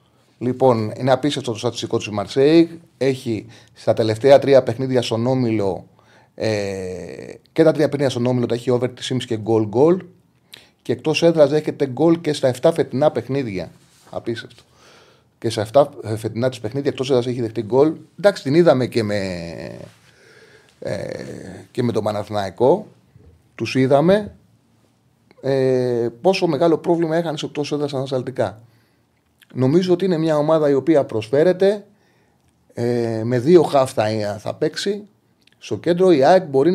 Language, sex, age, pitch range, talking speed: Greek, male, 30-49, 115-155 Hz, 145 wpm